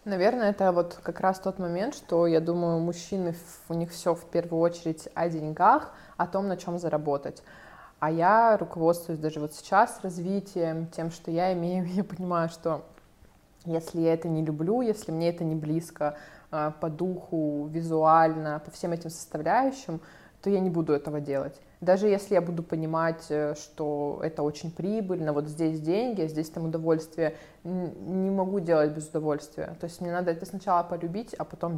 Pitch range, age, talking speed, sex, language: 160-180 Hz, 20-39, 170 wpm, female, Russian